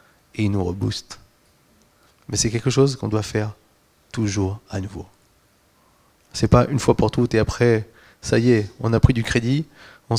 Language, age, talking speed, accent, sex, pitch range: French, 30-49, 185 wpm, French, male, 105-120 Hz